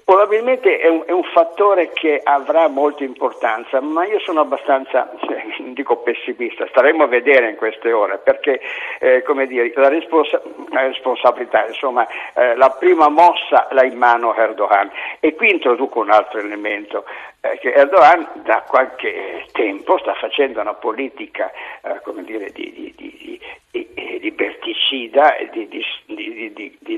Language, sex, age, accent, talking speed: Italian, male, 60-79, native, 130 wpm